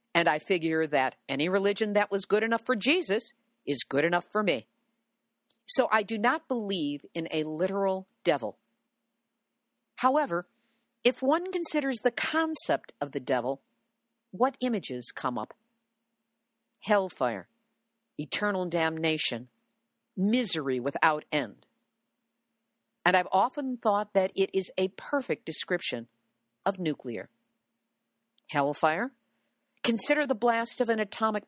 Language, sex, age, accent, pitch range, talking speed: English, female, 50-69, American, 165-235 Hz, 120 wpm